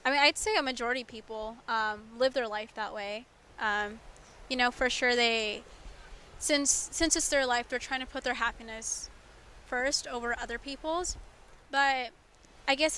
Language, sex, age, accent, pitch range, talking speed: English, female, 20-39, American, 220-260 Hz, 175 wpm